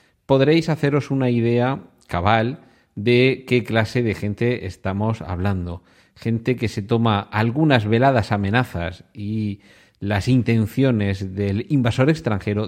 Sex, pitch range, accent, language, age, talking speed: male, 100-125 Hz, Spanish, Spanish, 40-59, 120 wpm